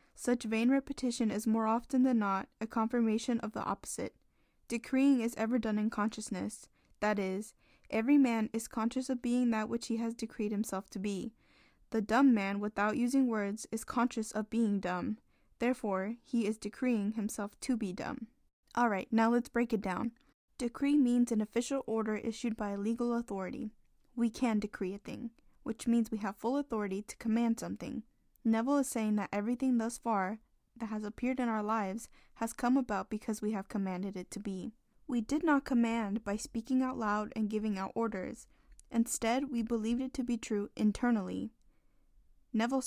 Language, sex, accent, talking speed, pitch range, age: English, female, American, 180 wpm, 210-245 Hz, 10-29